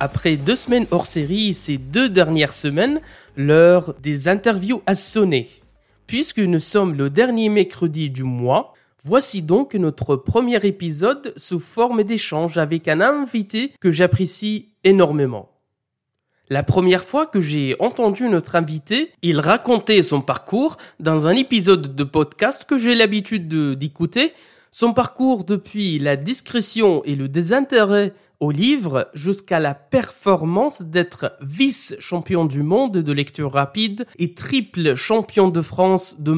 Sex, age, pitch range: male, 20-39, 150-220 Hz